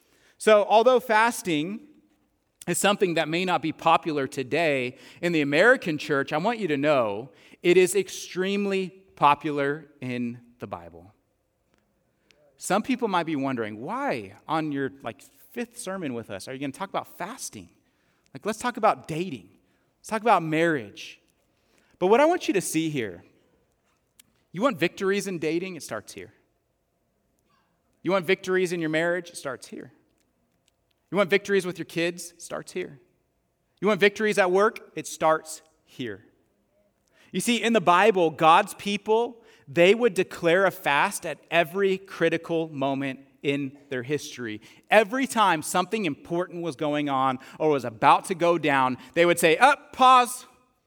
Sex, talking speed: male, 160 wpm